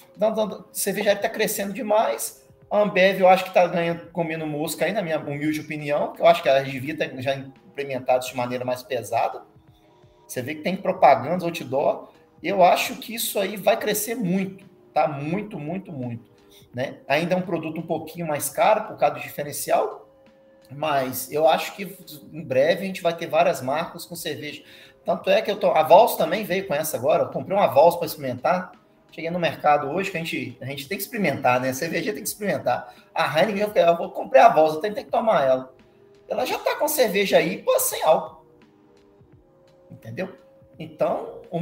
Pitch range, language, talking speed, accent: 135-195 Hz, Portuguese, 190 wpm, Brazilian